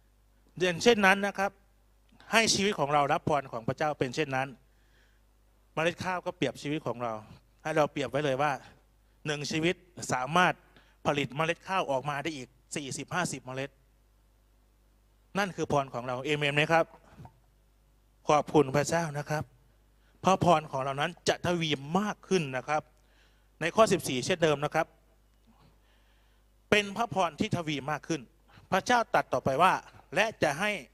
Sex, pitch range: male, 120-175 Hz